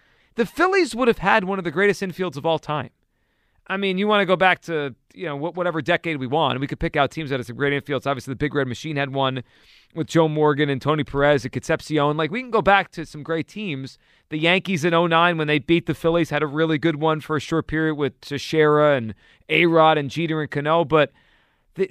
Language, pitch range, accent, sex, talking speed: English, 145-195 Hz, American, male, 245 wpm